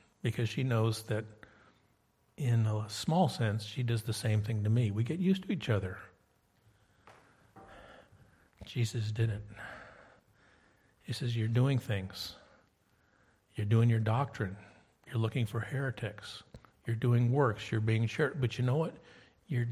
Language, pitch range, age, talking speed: English, 110-150 Hz, 60-79, 145 wpm